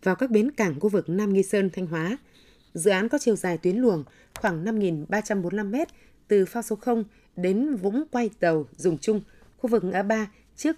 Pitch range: 175-225 Hz